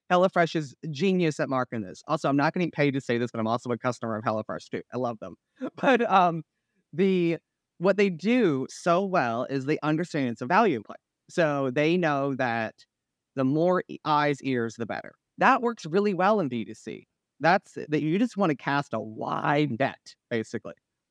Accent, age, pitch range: American, 30-49, 130-185 Hz